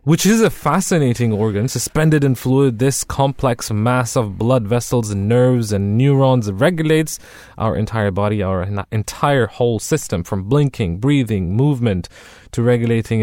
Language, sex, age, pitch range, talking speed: English, male, 20-39, 105-130 Hz, 145 wpm